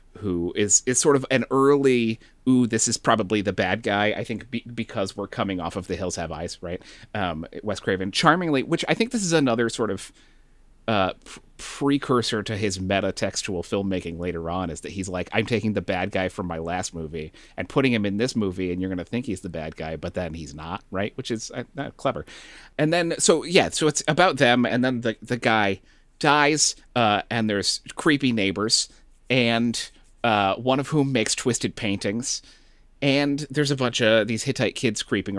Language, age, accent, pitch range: English, 30-49, American, 95-135 Hz